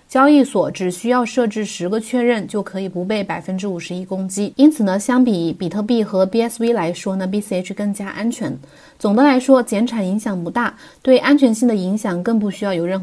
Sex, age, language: female, 20-39, Chinese